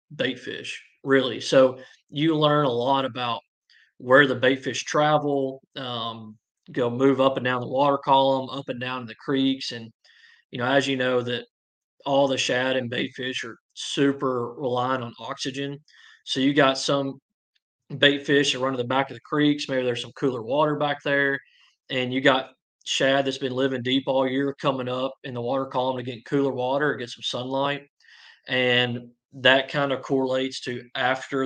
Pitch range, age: 125-140 Hz, 20-39